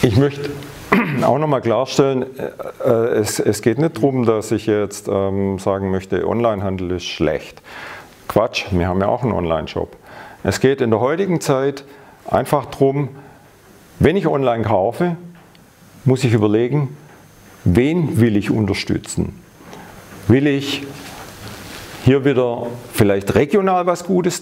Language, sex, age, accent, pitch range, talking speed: German, male, 50-69, German, 110-140 Hz, 130 wpm